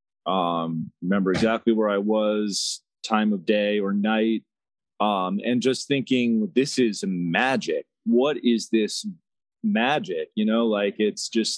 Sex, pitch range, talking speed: male, 100-130 Hz, 140 wpm